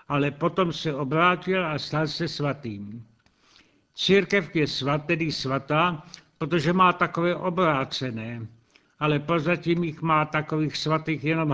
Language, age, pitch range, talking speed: Czech, 70-89, 140-170 Hz, 125 wpm